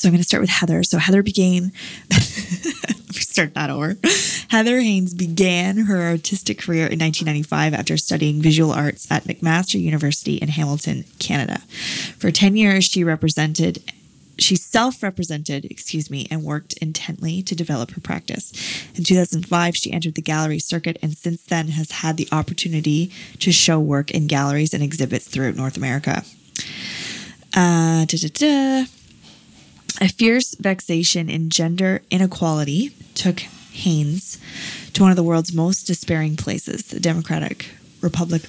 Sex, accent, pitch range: female, American, 155-185 Hz